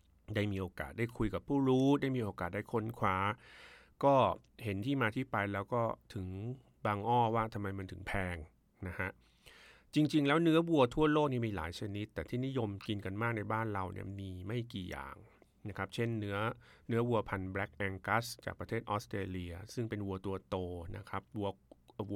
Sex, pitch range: male, 95-120 Hz